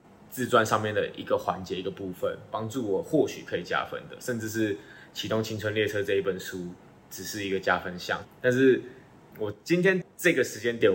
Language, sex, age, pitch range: Chinese, male, 20-39, 100-120 Hz